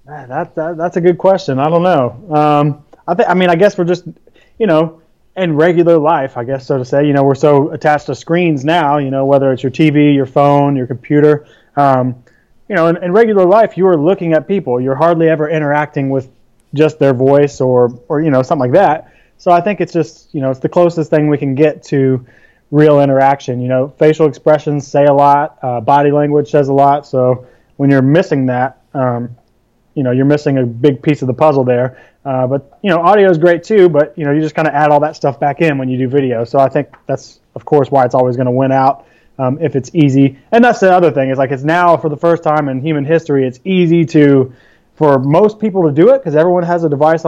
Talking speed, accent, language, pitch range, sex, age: 245 wpm, American, English, 135-165 Hz, male, 20-39